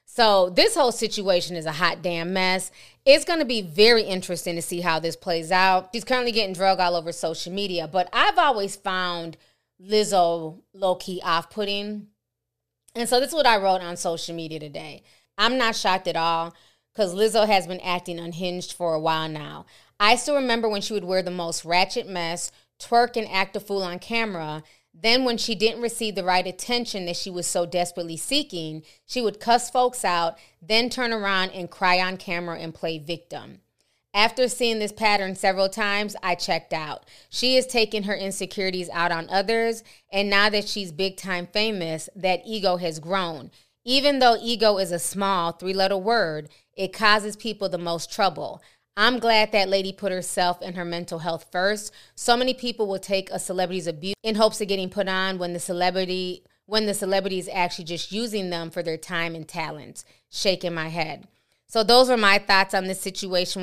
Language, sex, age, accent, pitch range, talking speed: English, female, 20-39, American, 175-215 Hz, 190 wpm